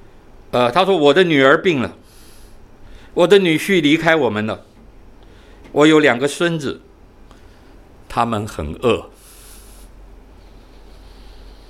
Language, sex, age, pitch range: Chinese, male, 60-79, 85-130 Hz